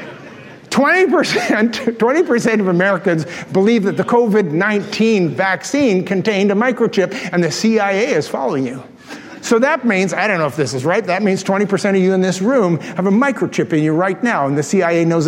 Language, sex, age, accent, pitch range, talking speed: English, male, 50-69, American, 170-225 Hz, 185 wpm